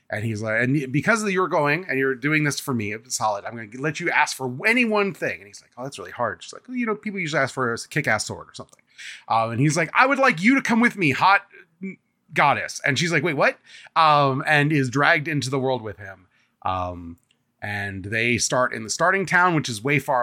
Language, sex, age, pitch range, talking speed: English, male, 30-49, 120-165 Hz, 255 wpm